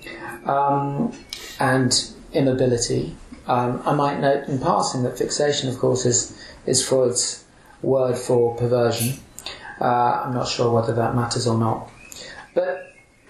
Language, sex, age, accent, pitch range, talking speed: English, male, 40-59, British, 125-160 Hz, 125 wpm